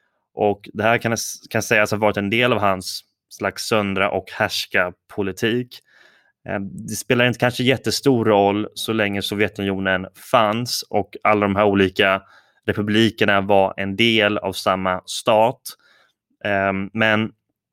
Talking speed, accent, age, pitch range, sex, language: 135 wpm, Swedish, 20-39, 100-110 Hz, male, English